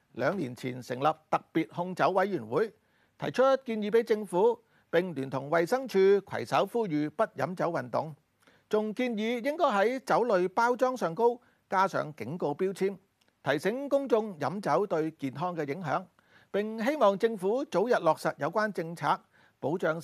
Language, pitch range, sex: Chinese, 155-230 Hz, male